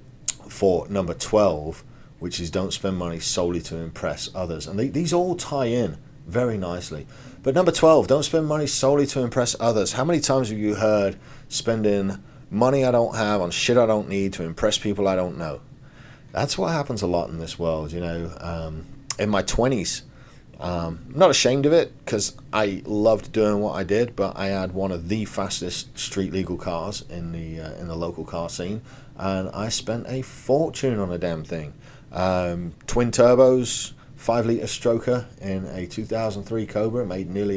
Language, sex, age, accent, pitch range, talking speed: English, male, 40-59, British, 90-130 Hz, 185 wpm